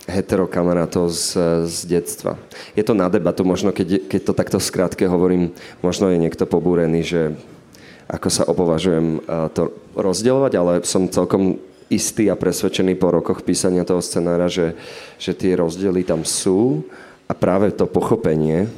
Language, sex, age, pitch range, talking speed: Slovak, male, 30-49, 80-95 Hz, 145 wpm